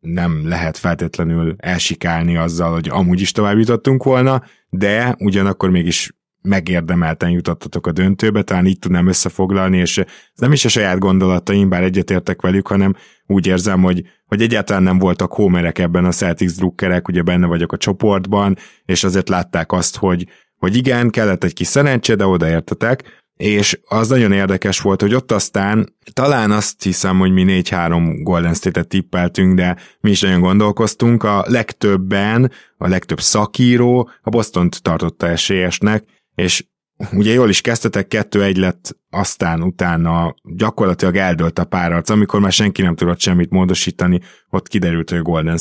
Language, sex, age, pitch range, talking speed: Hungarian, male, 20-39, 90-105 Hz, 155 wpm